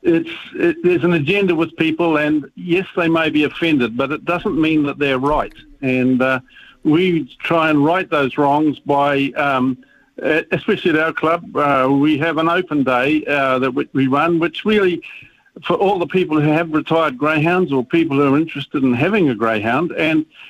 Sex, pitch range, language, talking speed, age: male, 145-180 Hz, English, 185 wpm, 50-69